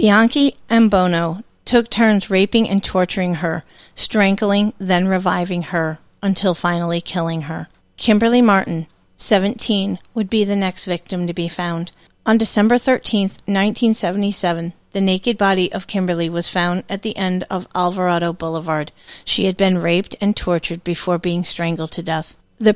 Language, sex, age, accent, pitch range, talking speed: English, female, 40-59, American, 175-210 Hz, 150 wpm